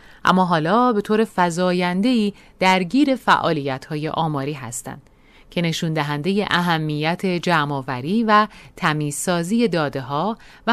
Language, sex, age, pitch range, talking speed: Persian, female, 30-49, 165-225 Hz, 110 wpm